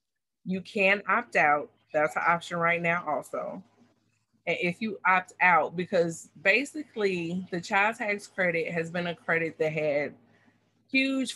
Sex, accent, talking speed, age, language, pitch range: female, American, 150 wpm, 30-49, English, 150-185 Hz